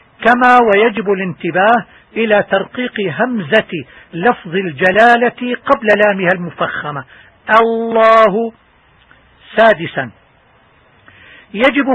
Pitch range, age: 190-230 Hz, 50-69